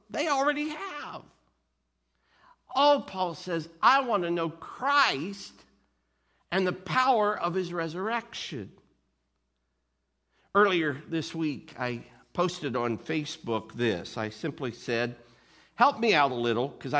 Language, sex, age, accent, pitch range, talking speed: English, male, 50-69, American, 115-185 Hz, 125 wpm